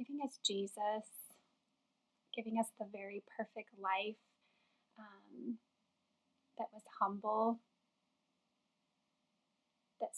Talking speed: 85 wpm